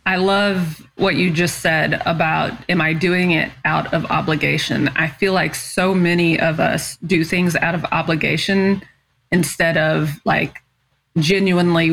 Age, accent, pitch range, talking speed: 20-39, American, 160-190 Hz, 150 wpm